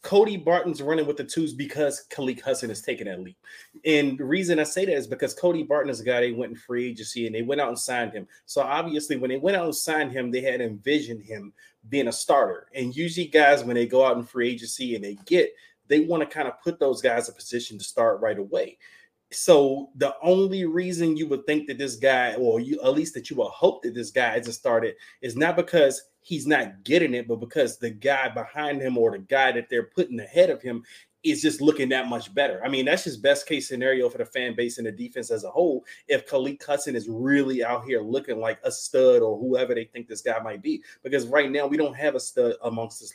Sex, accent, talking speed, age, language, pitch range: male, American, 245 wpm, 30-49, English, 125-175 Hz